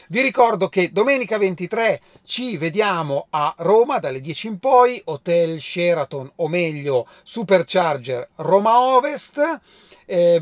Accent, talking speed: native, 120 wpm